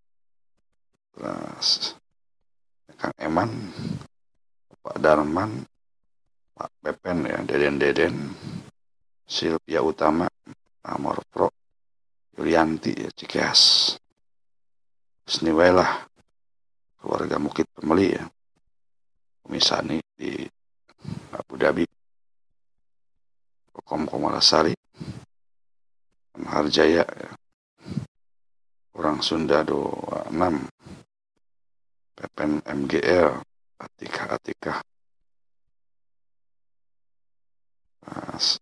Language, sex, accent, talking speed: Indonesian, male, native, 55 wpm